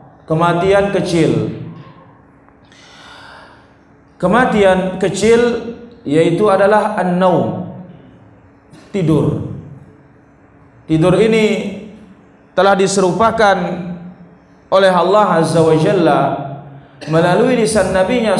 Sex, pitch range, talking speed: male, 170-220 Hz, 60 wpm